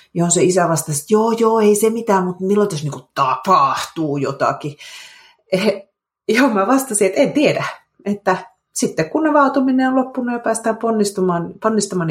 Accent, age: native, 30-49